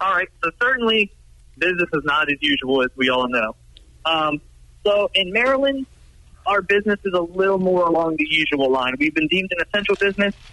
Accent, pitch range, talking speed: American, 135-165 Hz, 190 wpm